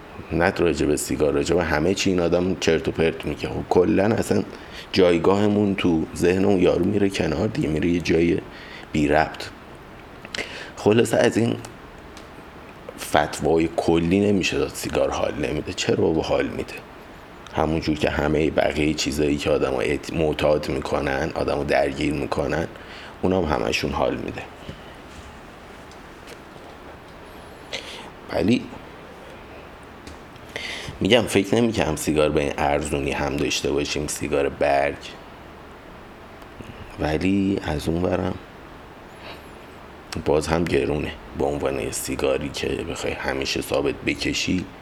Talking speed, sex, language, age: 120 wpm, male, Persian, 50-69